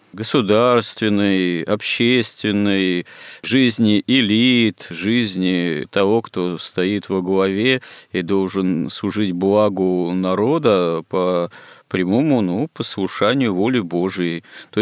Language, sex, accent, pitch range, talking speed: Russian, male, native, 95-110 Hz, 90 wpm